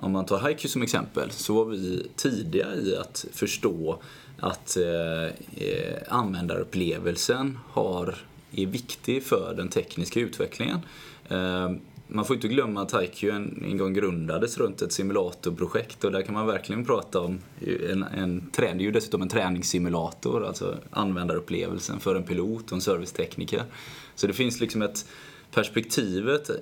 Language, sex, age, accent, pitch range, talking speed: Swedish, male, 20-39, native, 90-115 Hz, 150 wpm